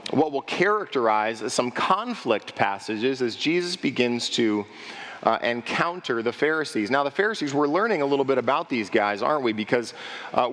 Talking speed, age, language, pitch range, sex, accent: 165 wpm, 40-59, English, 125-170 Hz, male, American